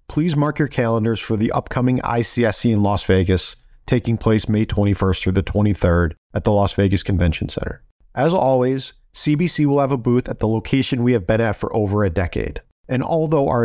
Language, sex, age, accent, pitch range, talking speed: English, male, 40-59, American, 110-135 Hz, 200 wpm